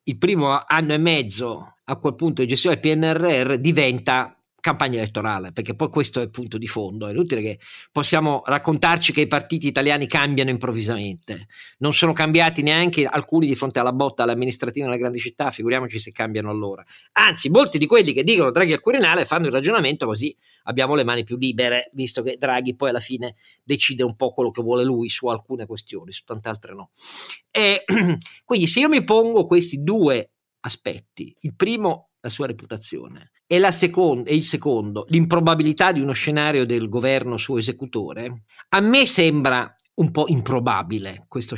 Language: Italian